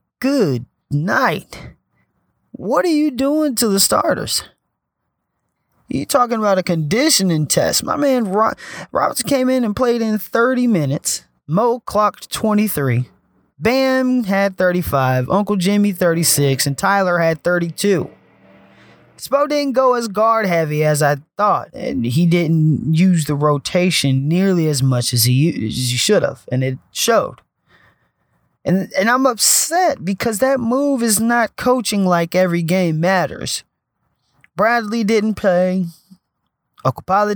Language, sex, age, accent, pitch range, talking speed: English, male, 30-49, American, 155-225 Hz, 135 wpm